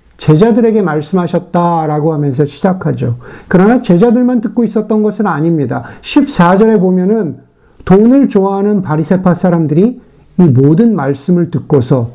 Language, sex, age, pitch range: Korean, male, 50-69, 160-225 Hz